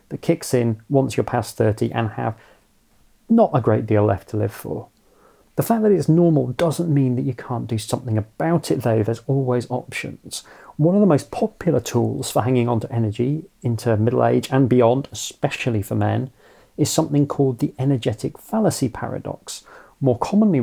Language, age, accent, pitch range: English, 40-59, British, 115-145 Hz